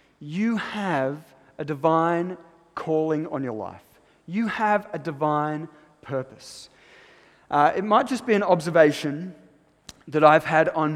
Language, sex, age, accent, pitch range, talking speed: English, male, 30-49, Australian, 155-190 Hz, 130 wpm